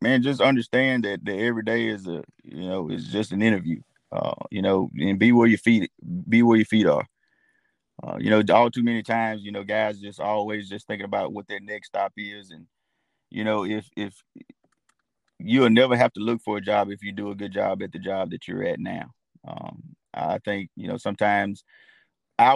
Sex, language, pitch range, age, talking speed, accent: male, English, 100-110 Hz, 30-49, 215 wpm, American